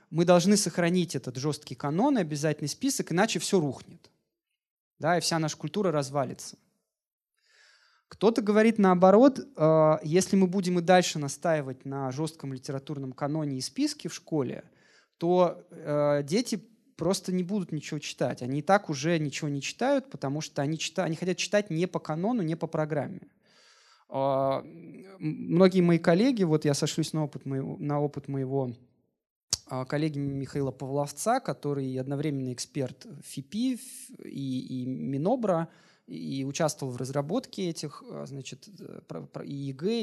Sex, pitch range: male, 140-185 Hz